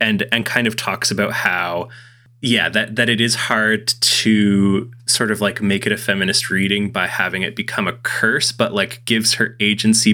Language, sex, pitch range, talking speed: English, male, 105-120 Hz, 195 wpm